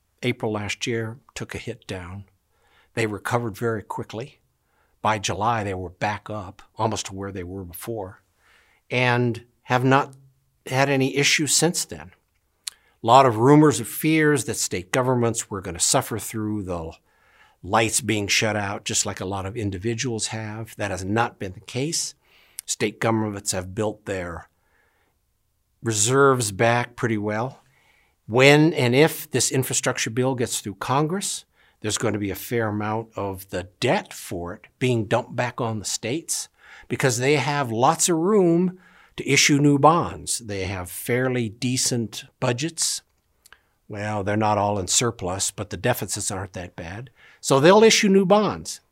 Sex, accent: male, American